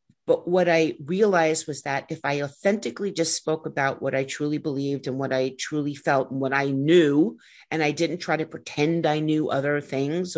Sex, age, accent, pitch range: female, 50-69, American, 140-180 Hz